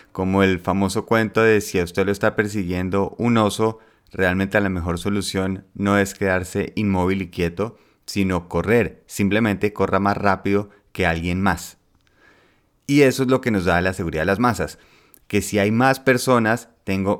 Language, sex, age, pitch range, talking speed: Spanish, male, 30-49, 90-105 Hz, 180 wpm